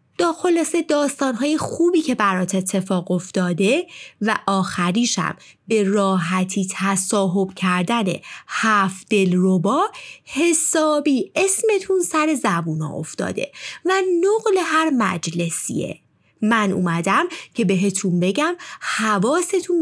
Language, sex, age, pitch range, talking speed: Persian, female, 20-39, 190-315 Hz, 95 wpm